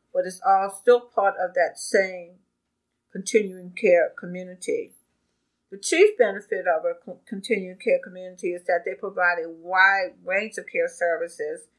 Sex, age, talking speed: female, 50-69, 150 wpm